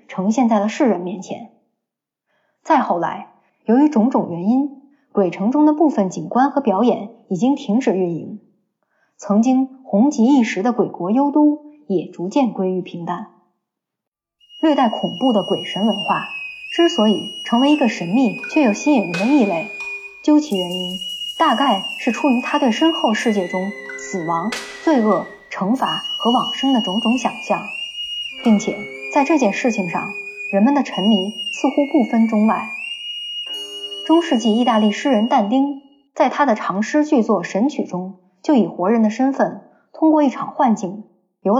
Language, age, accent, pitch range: Chinese, 20-39, native, 200-285 Hz